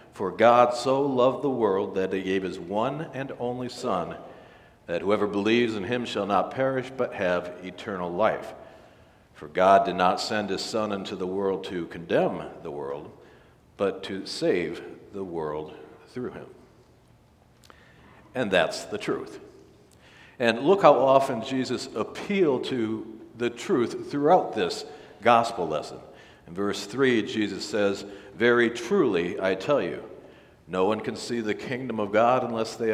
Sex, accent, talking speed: male, American, 155 wpm